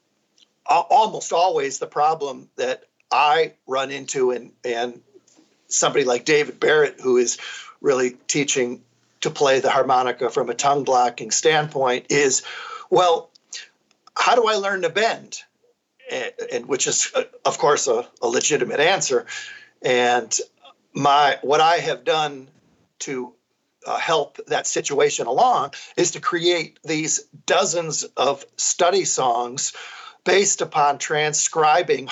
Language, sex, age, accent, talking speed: English, male, 40-59, American, 130 wpm